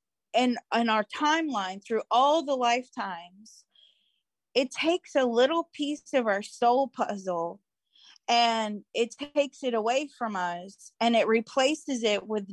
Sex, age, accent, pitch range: female, 30-49, American, 215-265 Hz